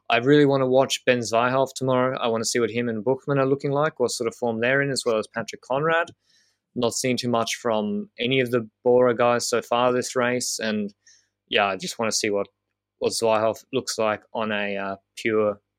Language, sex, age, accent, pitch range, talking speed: English, male, 20-39, Australian, 110-135 Hz, 230 wpm